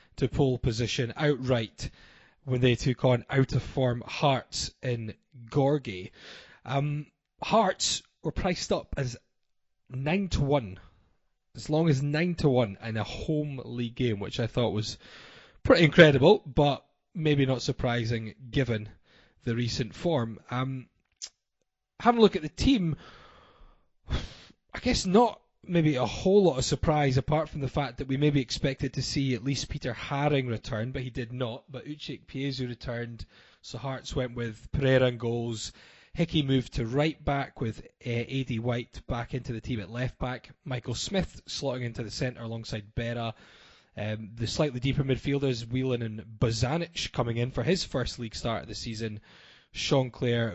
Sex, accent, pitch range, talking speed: male, British, 115-140 Hz, 160 wpm